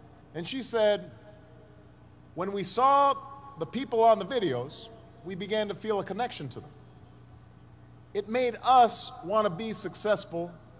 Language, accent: English, American